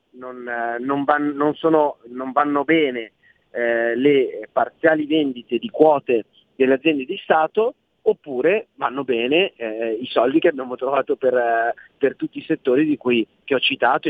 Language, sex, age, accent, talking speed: Italian, male, 30-49, native, 140 wpm